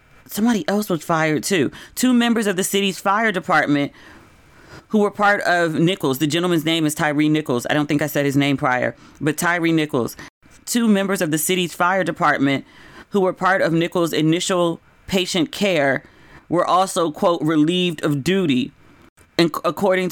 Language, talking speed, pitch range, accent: English, 165 wpm, 155-185 Hz, American